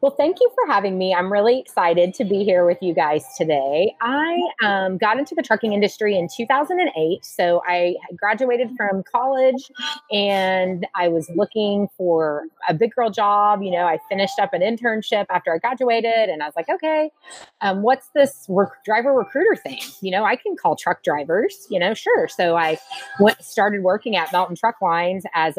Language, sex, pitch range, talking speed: English, female, 170-230 Hz, 190 wpm